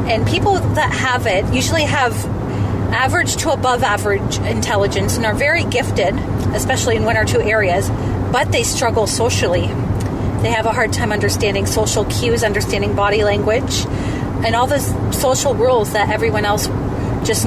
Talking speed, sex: 160 wpm, female